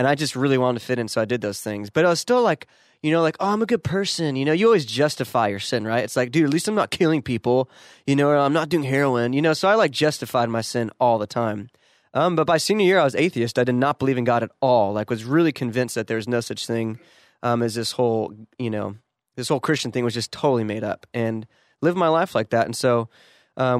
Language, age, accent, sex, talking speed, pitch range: English, 20-39, American, male, 280 wpm, 120-140 Hz